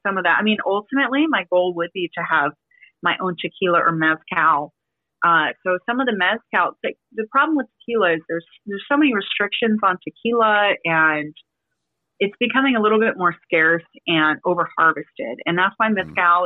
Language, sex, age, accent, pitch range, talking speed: English, female, 30-49, American, 170-225 Hz, 180 wpm